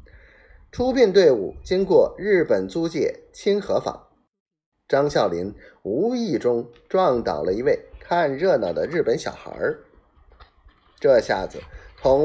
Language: Chinese